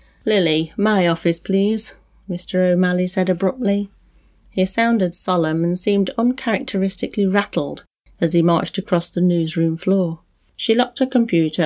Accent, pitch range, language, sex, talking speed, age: British, 170-210 Hz, English, female, 135 wpm, 30-49